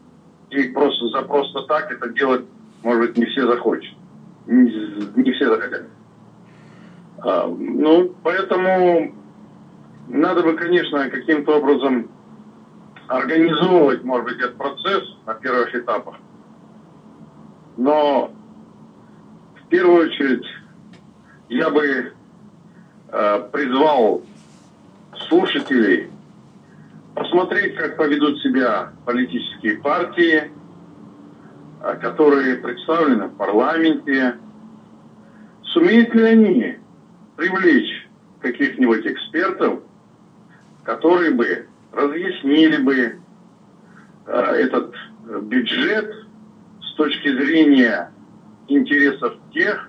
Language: Russian